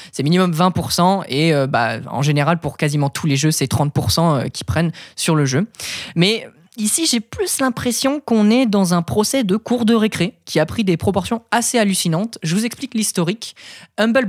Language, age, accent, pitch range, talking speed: French, 20-39, French, 145-205 Hz, 195 wpm